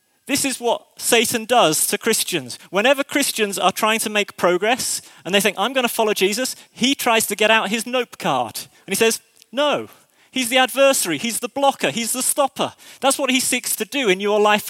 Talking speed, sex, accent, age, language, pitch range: 210 wpm, male, British, 30-49, English, 220-275 Hz